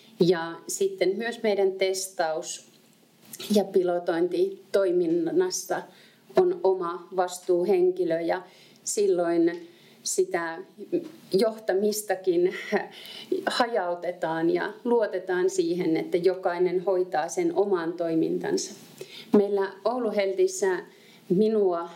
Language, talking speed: Finnish, 70 wpm